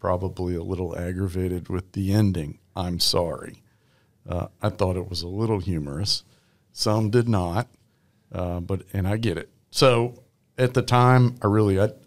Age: 50-69